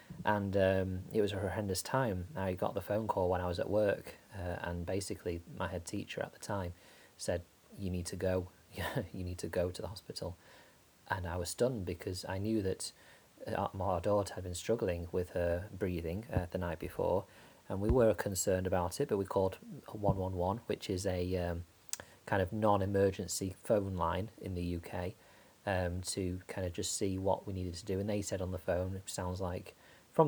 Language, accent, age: English, British, 30-49